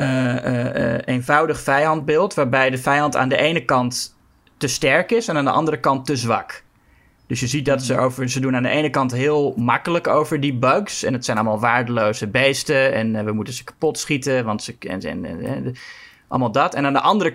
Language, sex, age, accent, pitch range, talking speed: Dutch, male, 20-39, Dutch, 115-140 Hz, 215 wpm